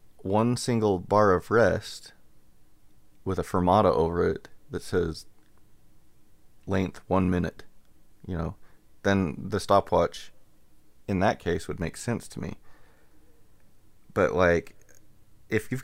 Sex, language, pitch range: male, English, 90-110 Hz